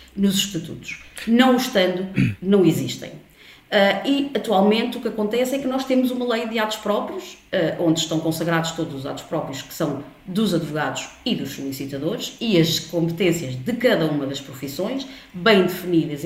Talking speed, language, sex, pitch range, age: 160 wpm, Portuguese, female, 160-195 Hz, 20-39